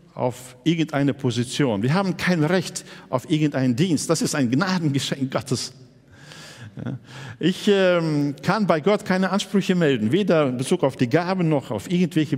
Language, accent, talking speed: German, German, 150 wpm